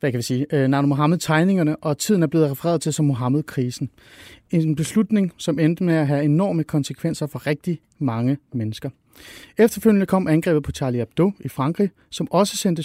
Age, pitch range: 30-49, 140-180 Hz